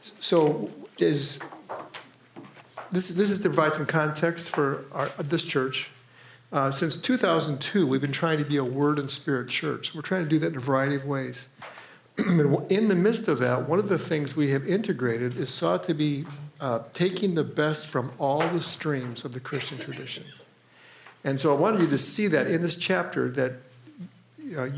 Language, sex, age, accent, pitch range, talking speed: English, male, 50-69, American, 135-170 Hz, 180 wpm